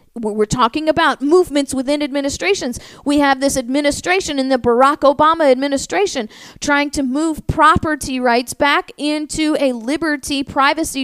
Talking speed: 135 wpm